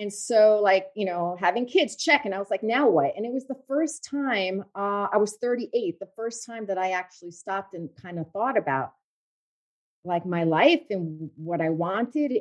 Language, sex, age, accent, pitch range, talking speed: English, female, 40-59, American, 185-275 Hz, 210 wpm